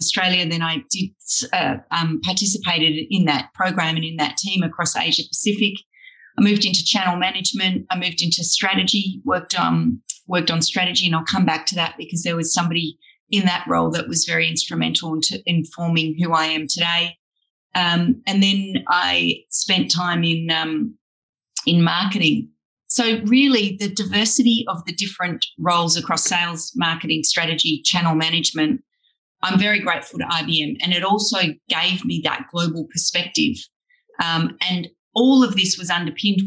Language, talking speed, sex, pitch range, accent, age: English, 160 wpm, female, 160-190 Hz, Australian, 30-49